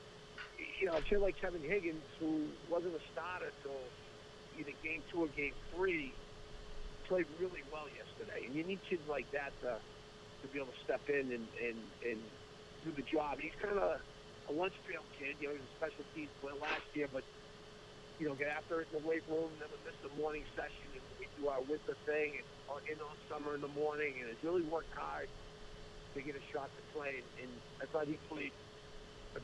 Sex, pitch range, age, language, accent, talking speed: male, 140-165 Hz, 50-69, English, American, 210 wpm